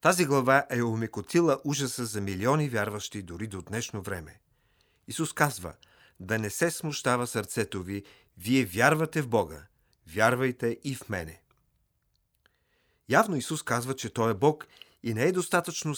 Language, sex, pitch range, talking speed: Bulgarian, male, 105-145 Hz, 145 wpm